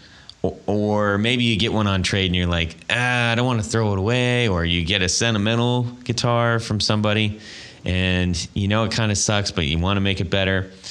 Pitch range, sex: 85-110 Hz, male